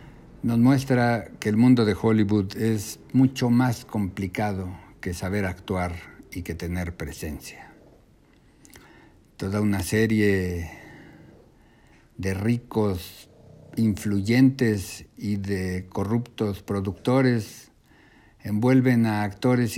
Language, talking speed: Spanish, 95 wpm